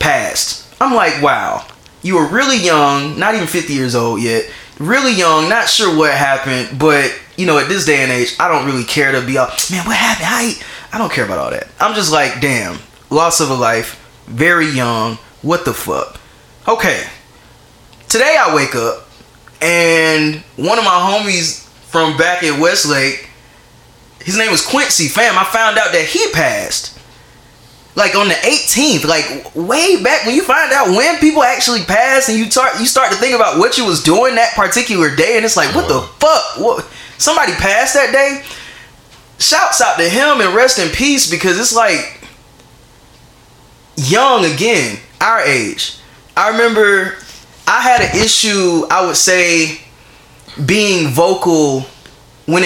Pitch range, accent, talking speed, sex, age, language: 145-230 Hz, American, 170 wpm, male, 20-39, English